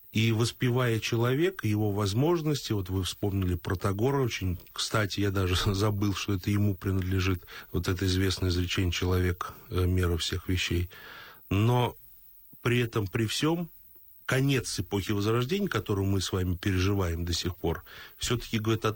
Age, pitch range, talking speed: 30-49, 95-115 Hz, 140 wpm